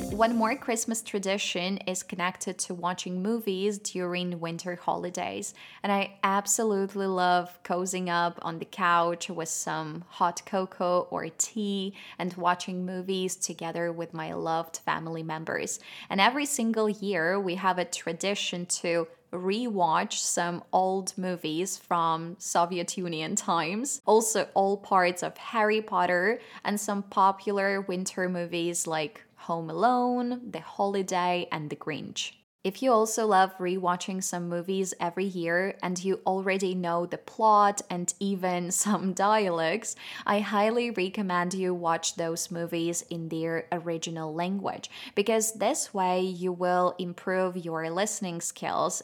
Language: Russian